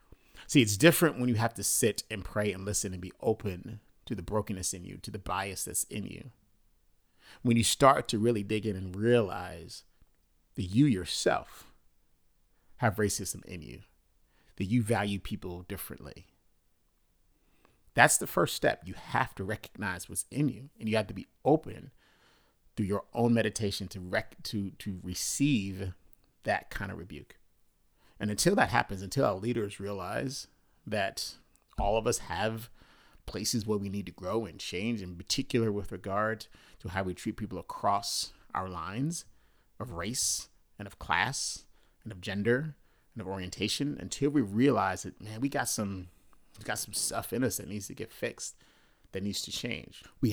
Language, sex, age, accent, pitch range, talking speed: English, male, 30-49, American, 90-115 Hz, 175 wpm